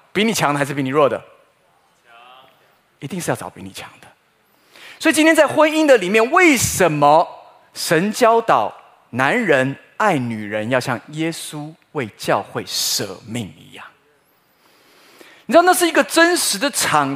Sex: male